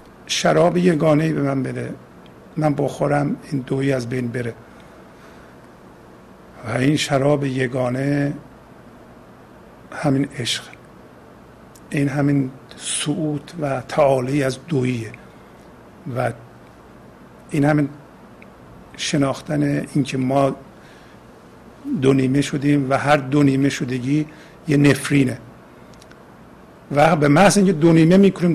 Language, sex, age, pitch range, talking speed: Persian, male, 50-69, 130-150 Hz, 105 wpm